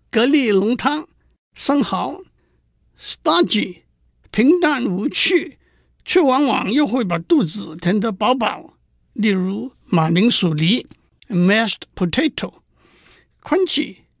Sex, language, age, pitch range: male, Chinese, 60-79, 200-290 Hz